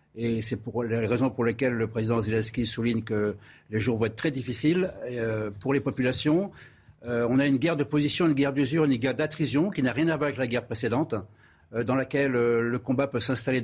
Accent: French